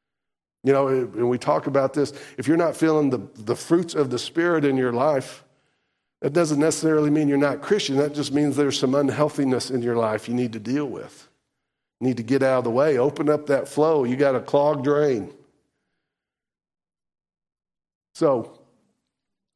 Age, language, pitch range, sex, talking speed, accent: 50-69, English, 130-155 Hz, male, 180 wpm, American